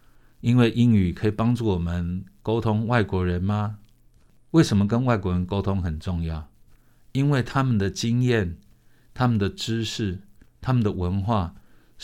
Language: Chinese